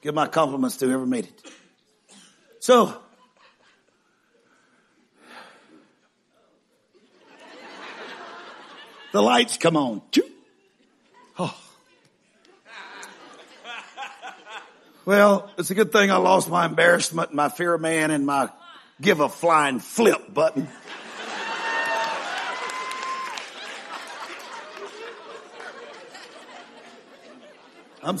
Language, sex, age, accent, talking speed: English, male, 50-69, American, 70 wpm